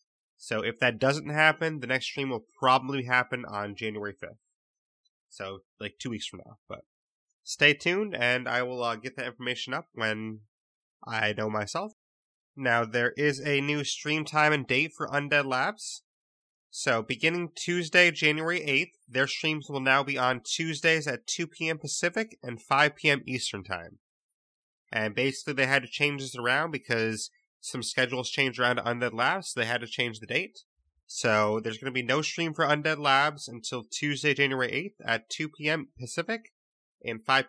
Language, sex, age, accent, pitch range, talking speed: English, male, 30-49, American, 120-150 Hz, 175 wpm